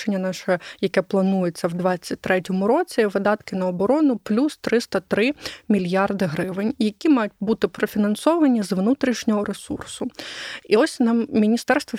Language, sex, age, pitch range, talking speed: English, female, 20-39, 195-240 Hz, 120 wpm